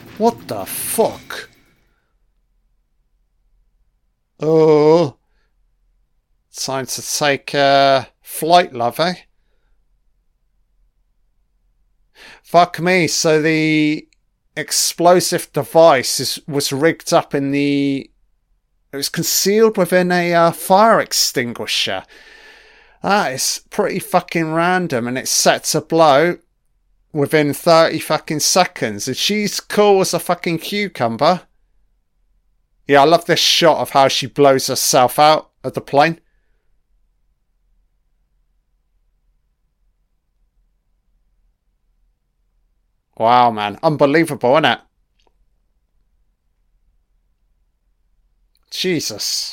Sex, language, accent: male, English, British